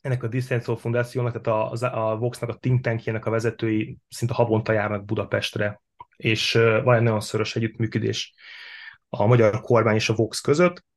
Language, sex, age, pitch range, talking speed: Hungarian, male, 20-39, 110-125 Hz, 165 wpm